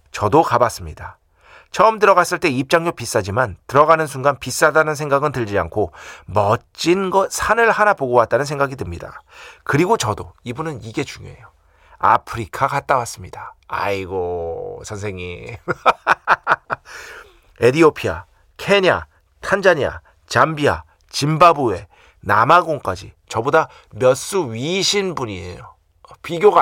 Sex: male